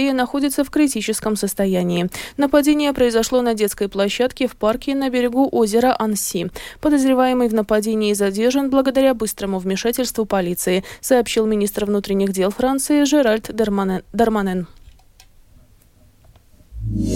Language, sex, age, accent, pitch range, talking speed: Russian, female, 20-39, native, 200-280 Hz, 105 wpm